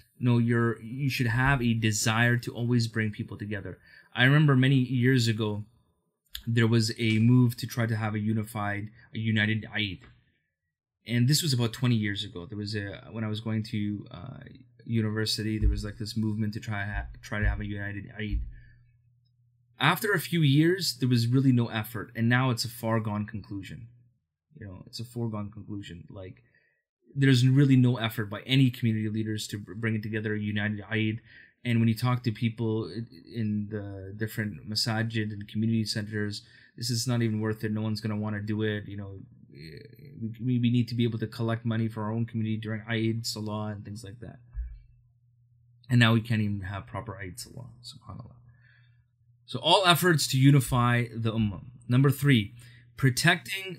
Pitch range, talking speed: 105-120 Hz, 185 wpm